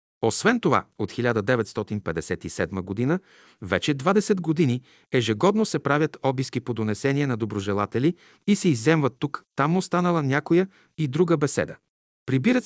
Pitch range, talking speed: 125-175 Hz, 130 wpm